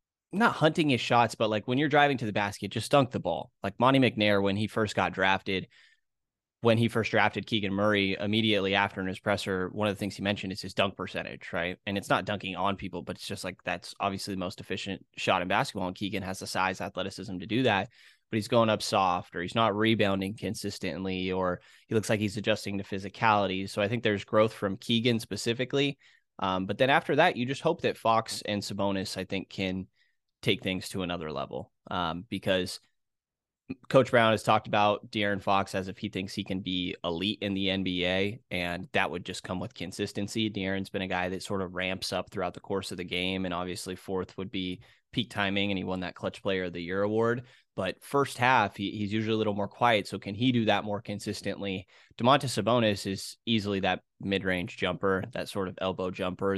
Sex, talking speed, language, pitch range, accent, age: male, 220 wpm, English, 95-110 Hz, American, 20-39